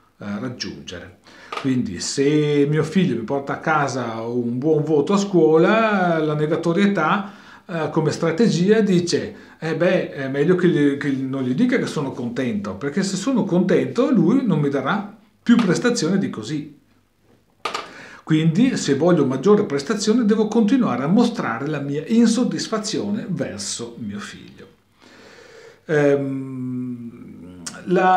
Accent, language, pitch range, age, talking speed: native, Italian, 130-185 Hz, 40-59, 130 wpm